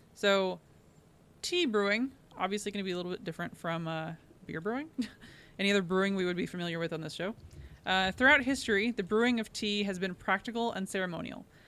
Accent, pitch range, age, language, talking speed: American, 185-225 Hz, 20-39, English, 195 wpm